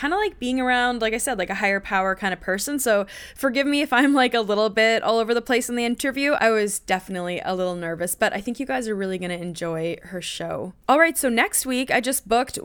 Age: 20-39